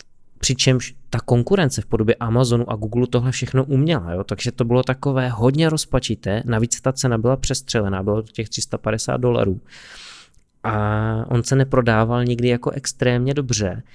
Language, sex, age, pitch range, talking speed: Czech, male, 20-39, 105-125 Hz, 155 wpm